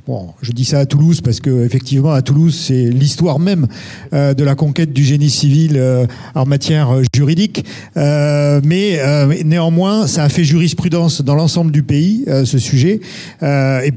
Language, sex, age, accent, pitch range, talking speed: French, male, 50-69, French, 135-165 Hz, 155 wpm